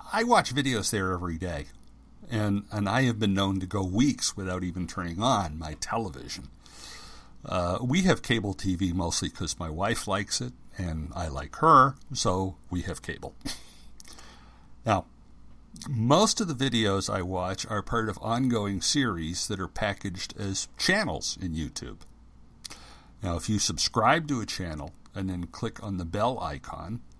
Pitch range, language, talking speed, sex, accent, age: 90-120 Hz, English, 160 wpm, male, American, 60-79